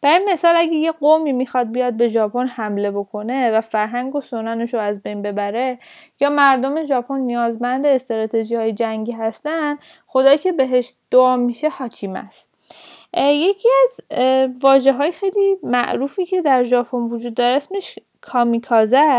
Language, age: Persian, 10-29